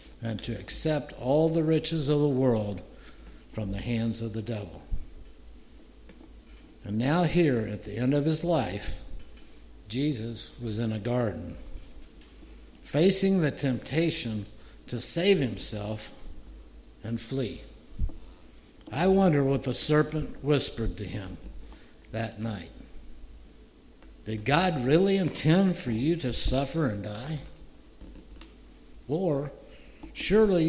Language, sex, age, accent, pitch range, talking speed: English, male, 60-79, American, 105-145 Hz, 115 wpm